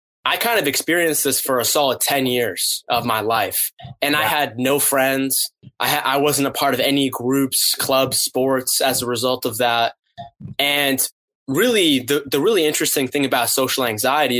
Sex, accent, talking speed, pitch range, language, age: male, American, 185 wpm, 130-155 Hz, English, 20-39